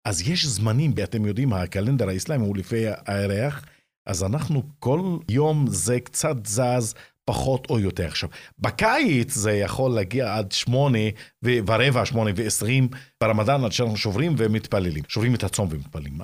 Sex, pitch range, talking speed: male, 100-135 Hz, 145 wpm